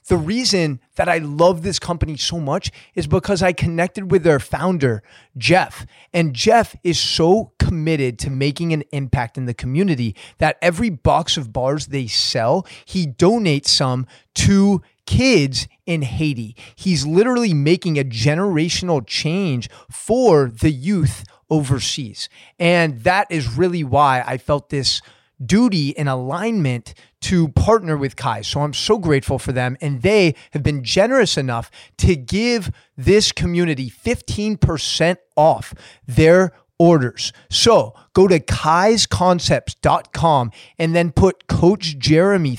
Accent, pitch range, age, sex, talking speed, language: American, 135-180 Hz, 30-49, male, 135 wpm, English